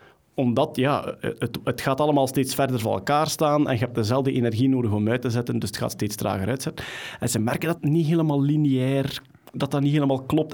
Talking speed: 220 wpm